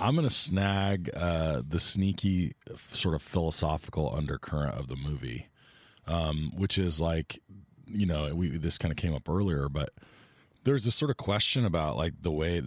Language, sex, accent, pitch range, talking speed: English, male, American, 75-95 Hz, 175 wpm